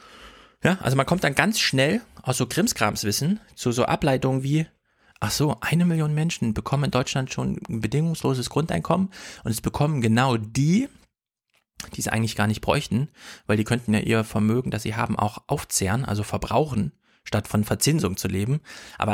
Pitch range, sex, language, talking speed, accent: 110-160 Hz, male, German, 175 wpm, German